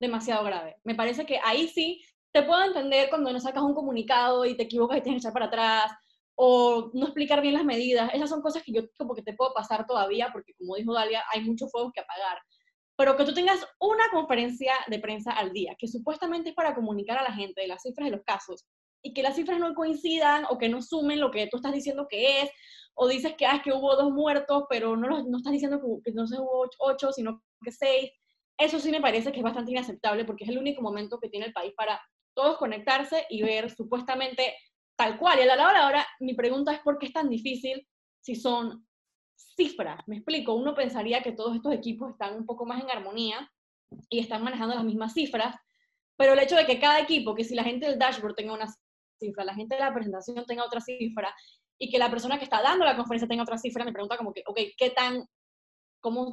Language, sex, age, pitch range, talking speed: Spanish, female, 10-29, 225-280 Hz, 235 wpm